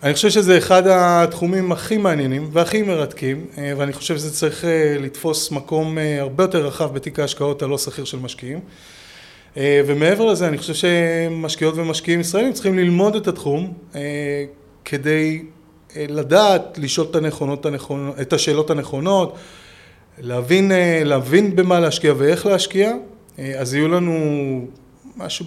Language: Hebrew